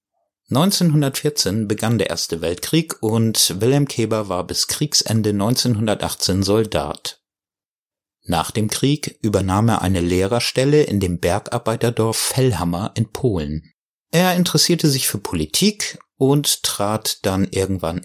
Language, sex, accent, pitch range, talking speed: German, male, German, 95-130 Hz, 115 wpm